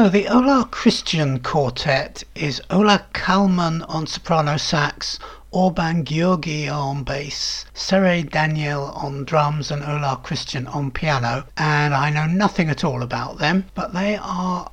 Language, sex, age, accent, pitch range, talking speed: English, male, 60-79, British, 145-195 Hz, 145 wpm